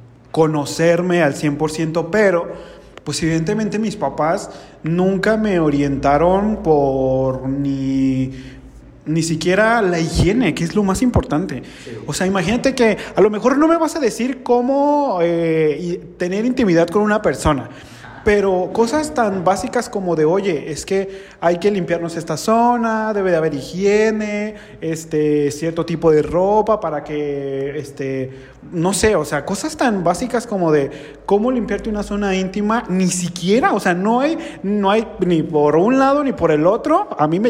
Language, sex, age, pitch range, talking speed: Spanish, male, 30-49, 155-215 Hz, 160 wpm